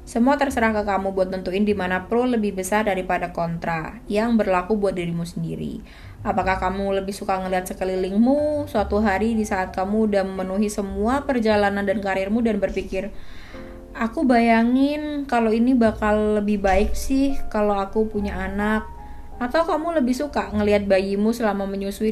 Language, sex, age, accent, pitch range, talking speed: Indonesian, female, 20-39, native, 190-220 Hz, 150 wpm